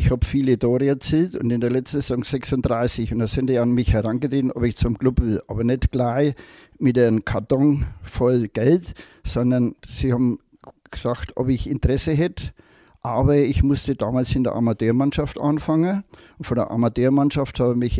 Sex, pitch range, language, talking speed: male, 120-155 Hz, German, 180 wpm